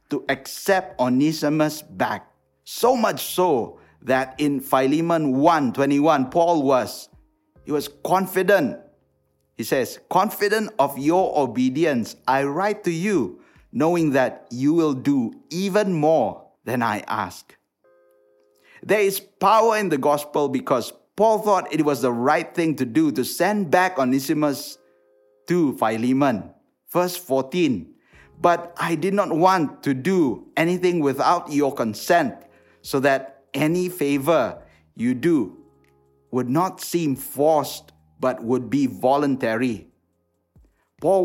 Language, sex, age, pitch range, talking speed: English, male, 50-69, 125-175 Hz, 125 wpm